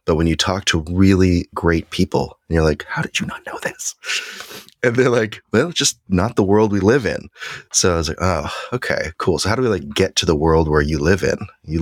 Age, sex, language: 30-49, male, English